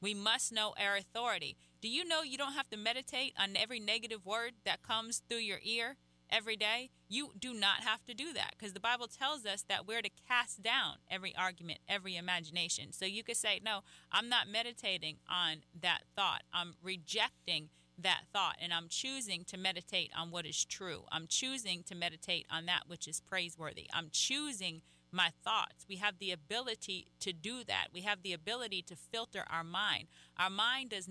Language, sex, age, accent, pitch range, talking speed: English, female, 30-49, American, 175-225 Hz, 195 wpm